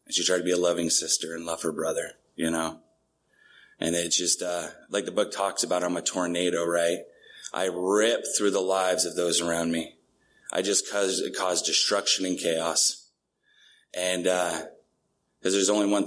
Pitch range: 85-115 Hz